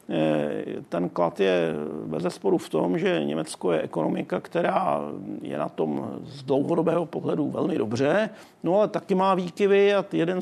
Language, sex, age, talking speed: Czech, male, 70-89, 150 wpm